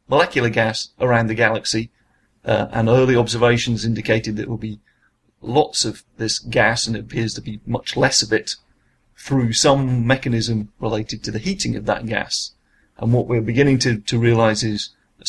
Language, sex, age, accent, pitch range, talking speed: English, male, 30-49, British, 110-120 Hz, 180 wpm